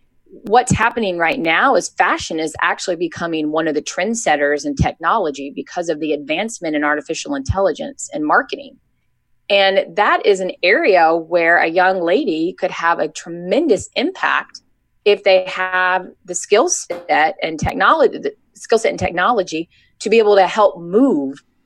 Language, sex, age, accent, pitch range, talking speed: English, female, 30-49, American, 155-230 Hz, 160 wpm